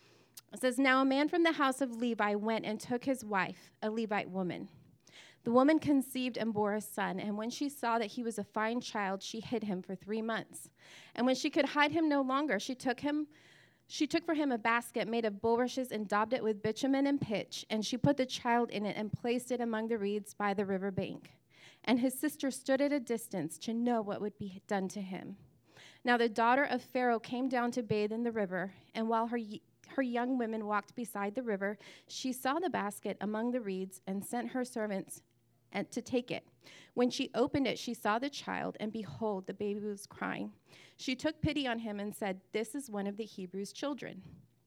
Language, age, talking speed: English, 20-39, 220 wpm